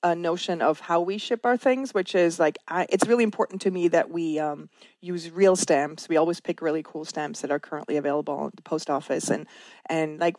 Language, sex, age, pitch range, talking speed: English, female, 30-49, 170-215 Hz, 230 wpm